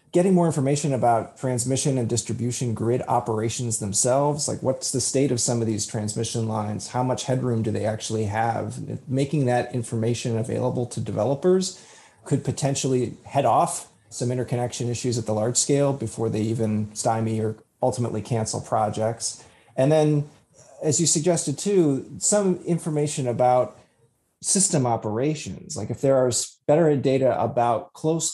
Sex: male